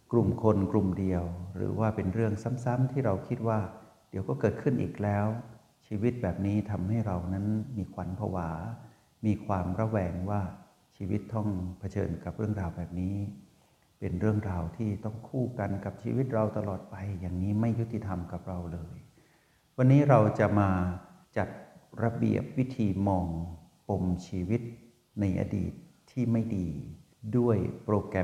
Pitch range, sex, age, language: 90-110 Hz, male, 60-79, Thai